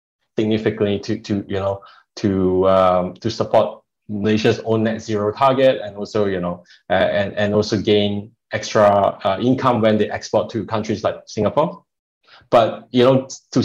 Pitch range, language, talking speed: 100-115 Hz, English, 165 wpm